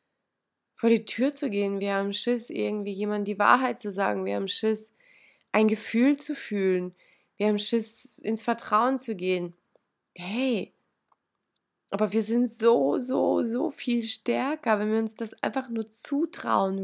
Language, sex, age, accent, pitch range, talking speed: German, female, 20-39, German, 195-240 Hz, 155 wpm